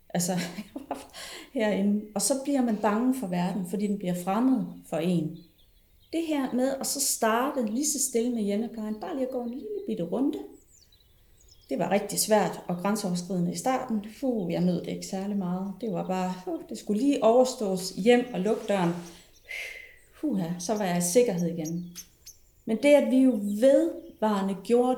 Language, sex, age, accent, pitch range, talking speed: Danish, female, 30-49, native, 180-250 Hz, 180 wpm